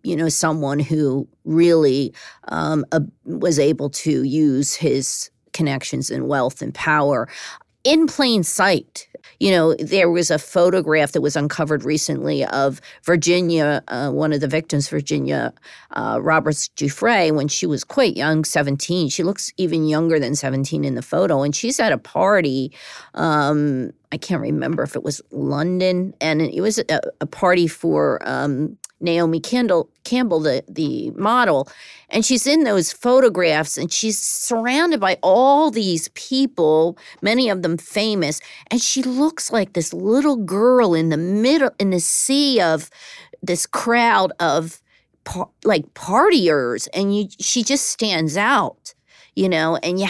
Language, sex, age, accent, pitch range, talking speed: English, female, 40-59, American, 155-220 Hz, 150 wpm